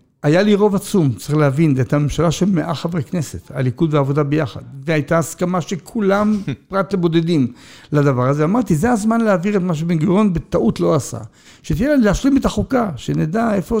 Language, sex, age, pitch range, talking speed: Hebrew, male, 60-79, 150-195 Hz, 180 wpm